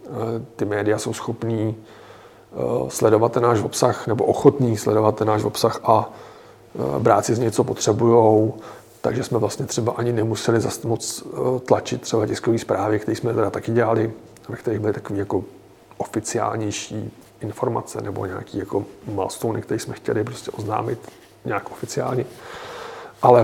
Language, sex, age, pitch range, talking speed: Czech, male, 40-59, 105-115 Hz, 145 wpm